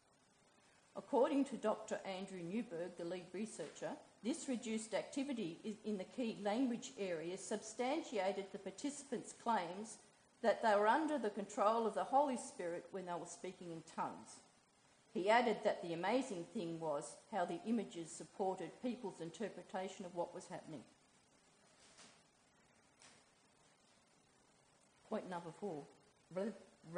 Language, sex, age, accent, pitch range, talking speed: English, female, 40-59, Australian, 185-245 Hz, 125 wpm